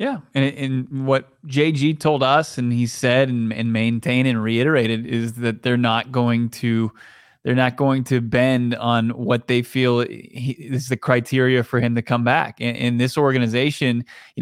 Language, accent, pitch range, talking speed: English, American, 125-145 Hz, 175 wpm